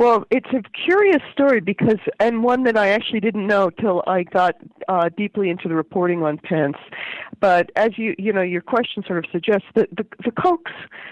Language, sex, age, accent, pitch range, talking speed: English, female, 50-69, American, 155-200 Hz, 200 wpm